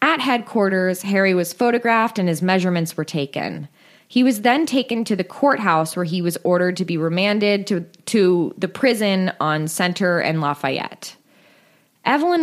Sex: female